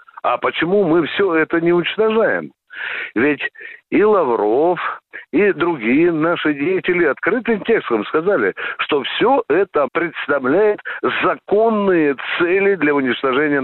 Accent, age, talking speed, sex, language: native, 60-79, 110 wpm, male, Russian